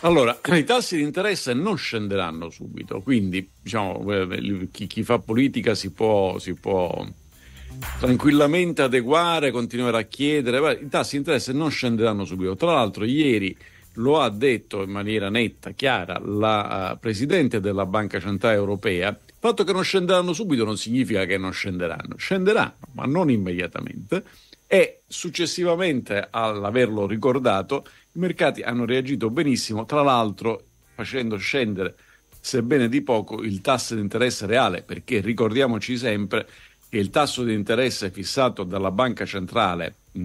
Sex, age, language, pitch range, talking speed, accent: male, 50-69, Italian, 100-130 Hz, 140 wpm, native